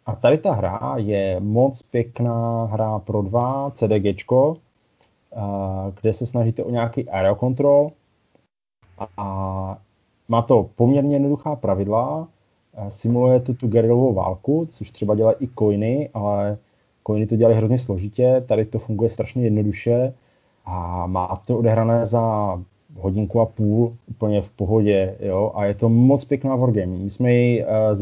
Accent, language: native, Czech